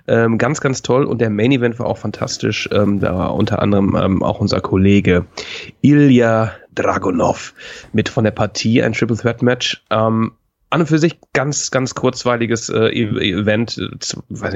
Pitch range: 105-145 Hz